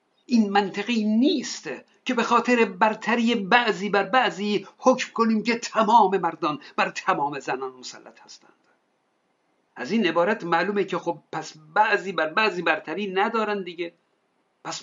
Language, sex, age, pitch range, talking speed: Persian, male, 50-69, 175-230 Hz, 140 wpm